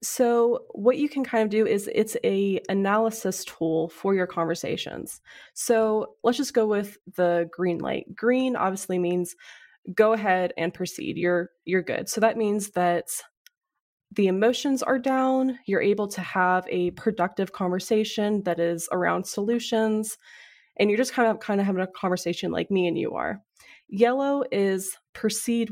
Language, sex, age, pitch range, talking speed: English, female, 20-39, 180-225 Hz, 165 wpm